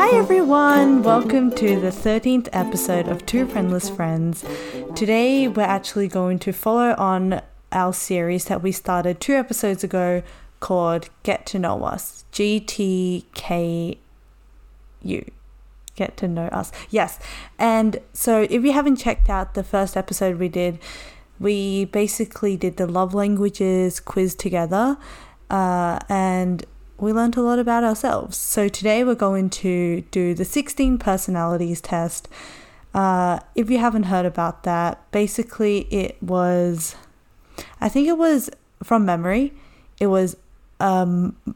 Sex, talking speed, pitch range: female, 135 wpm, 180-220 Hz